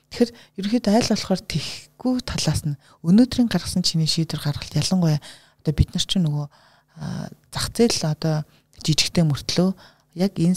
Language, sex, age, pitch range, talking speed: Russian, female, 30-49, 150-185 Hz, 110 wpm